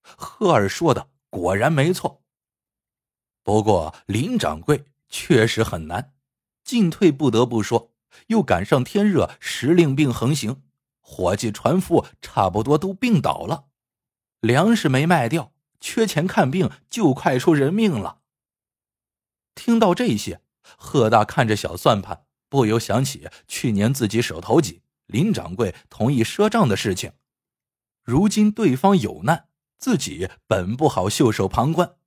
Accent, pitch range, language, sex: native, 115-175 Hz, Chinese, male